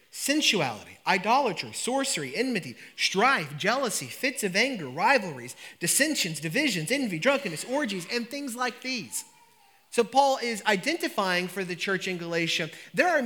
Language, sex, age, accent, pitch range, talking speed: English, male, 30-49, American, 165-230 Hz, 135 wpm